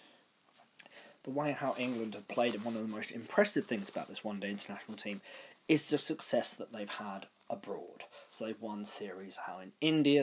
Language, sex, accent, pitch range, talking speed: English, male, British, 105-135 Hz, 195 wpm